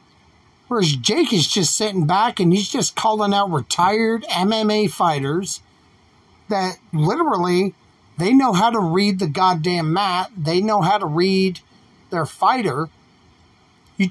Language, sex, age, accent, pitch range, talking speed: English, male, 50-69, American, 155-210 Hz, 135 wpm